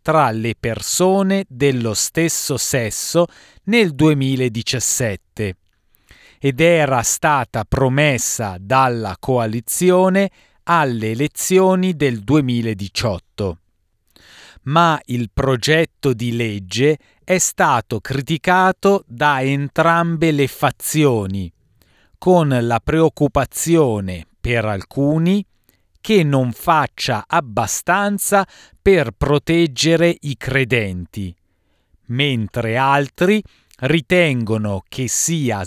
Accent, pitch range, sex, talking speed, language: native, 110-165 Hz, male, 80 wpm, Italian